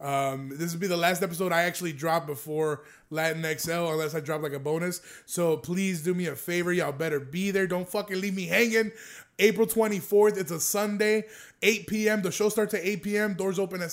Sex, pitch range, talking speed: male, 170-205 Hz, 215 wpm